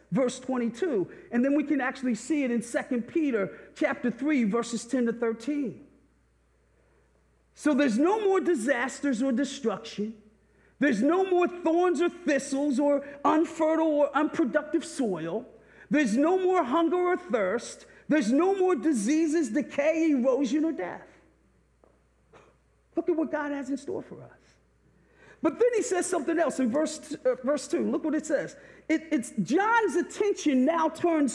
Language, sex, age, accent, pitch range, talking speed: English, male, 40-59, American, 250-320 Hz, 155 wpm